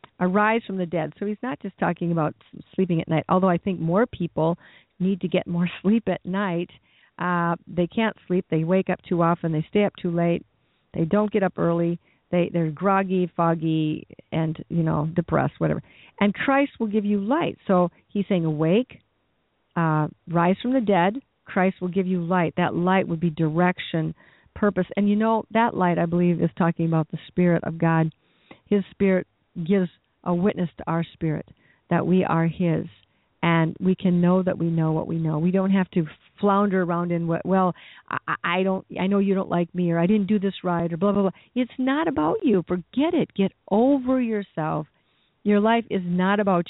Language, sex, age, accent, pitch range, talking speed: English, female, 50-69, American, 170-200 Hz, 200 wpm